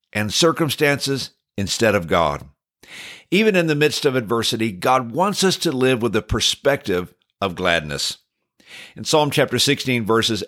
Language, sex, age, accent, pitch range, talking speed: English, male, 60-79, American, 110-150 Hz, 145 wpm